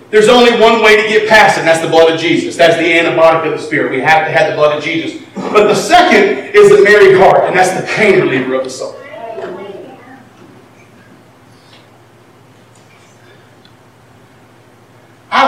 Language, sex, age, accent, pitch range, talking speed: English, male, 40-59, American, 170-275 Hz, 170 wpm